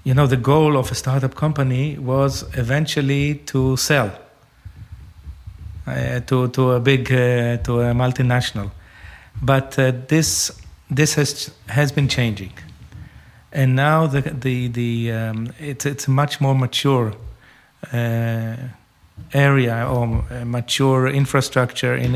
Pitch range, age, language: 120-140 Hz, 40-59, German